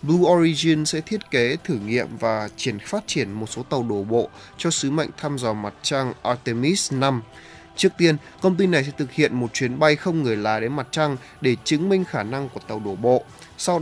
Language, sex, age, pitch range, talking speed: Vietnamese, male, 20-39, 115-155 Hz, 225 wpm